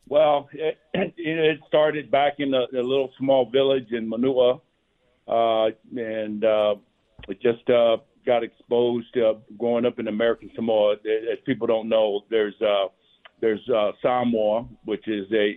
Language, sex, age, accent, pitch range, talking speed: English, male, 50-69, American, 100-120 Hz, 155 wpm